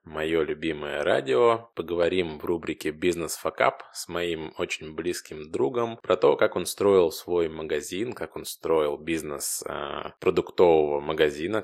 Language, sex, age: Russian, male, 20-39